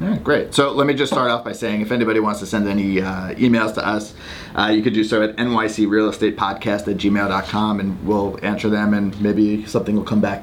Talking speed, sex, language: 230 wpm, male, English